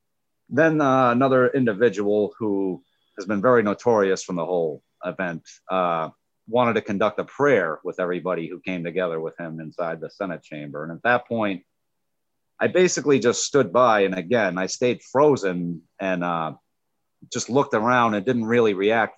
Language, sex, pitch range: English, male, 85-115 Hz